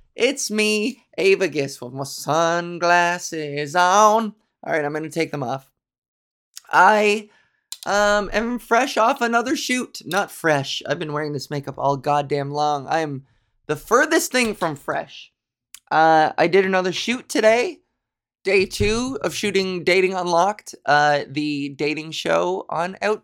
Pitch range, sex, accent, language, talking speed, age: 150-240 Hz, male, American, English, 145 wpm, 20-39